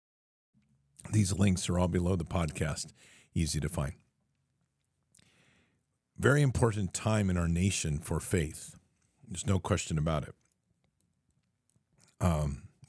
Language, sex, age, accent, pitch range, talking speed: English, male, 50-69, American, 80-100 Hz, 110 wpm